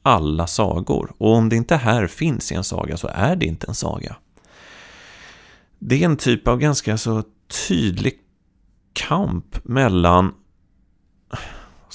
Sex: male